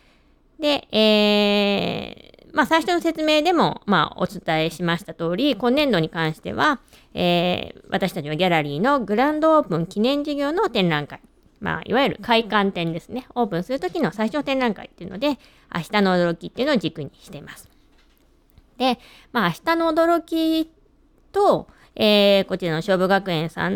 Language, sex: Japanese, female